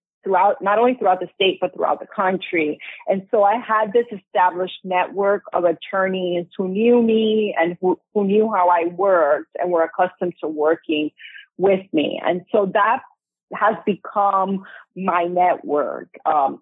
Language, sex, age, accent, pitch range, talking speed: English, female, 30-49, American, 165-200 Hz, 160 wpm